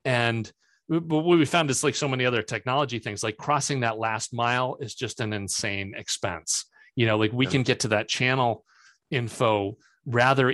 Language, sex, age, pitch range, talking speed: English, male, 30-49, 100-120 Hz, 180 wpm